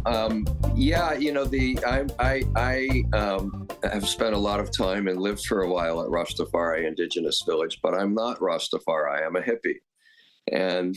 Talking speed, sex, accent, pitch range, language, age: 175 wpm, male, American, 90-115 Hz, English, 50-69